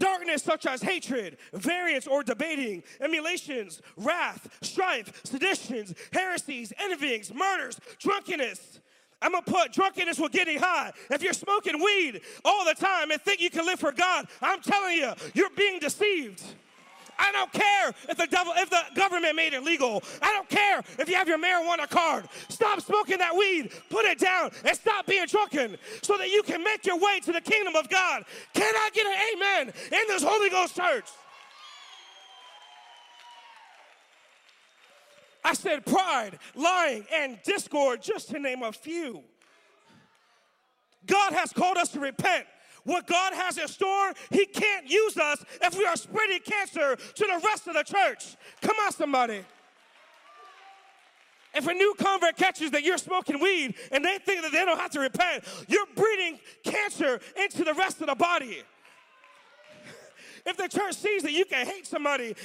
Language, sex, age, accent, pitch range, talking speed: English, male, 40-59, American, 290-390 Hz, 165 wpm